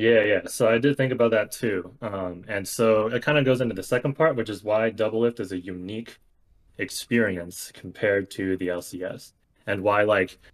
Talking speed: 200 wpm